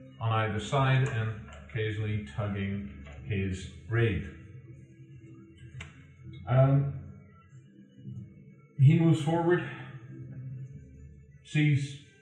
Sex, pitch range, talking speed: male, 110-140 Hz, 65 wpm